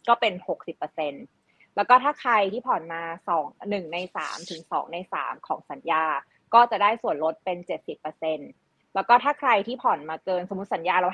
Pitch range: 175-225 Hz